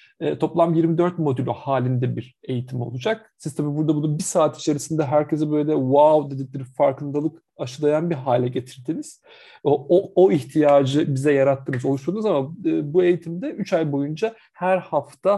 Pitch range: 150-205 Hz